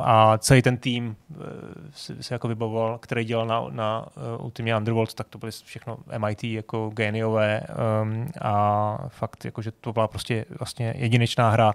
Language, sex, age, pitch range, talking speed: Czech, male, 20-39, 110-130 Hz, 165 wpm